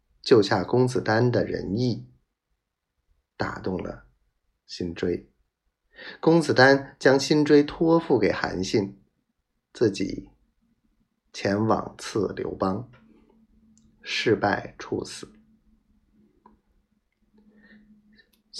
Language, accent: Chinese, native